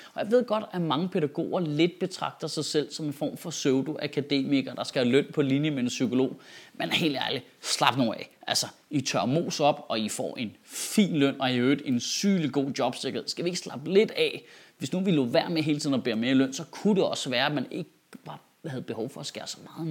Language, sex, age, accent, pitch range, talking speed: Danish, male, 30-49, native, 135-175 Hz, 245 wpm